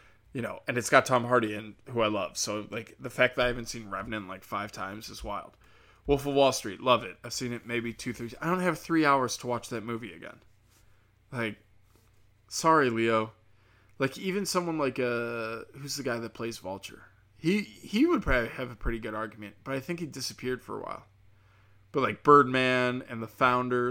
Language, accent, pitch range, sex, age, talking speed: English, American, 105-130 Hz, male, 20-39, 210 wpm